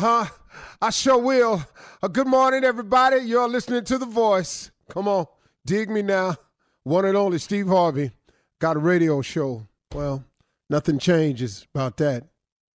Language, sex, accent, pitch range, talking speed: English, male, American, 120-160 Hz, 145 wpm